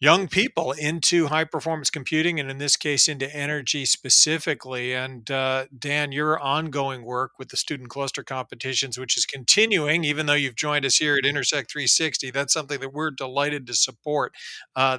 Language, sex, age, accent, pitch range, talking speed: English, male, 40-59, American, 135-160 Hz, 190 wpm